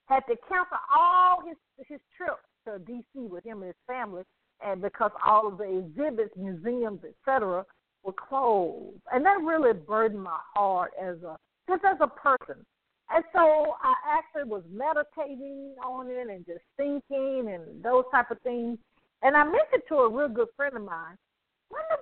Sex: female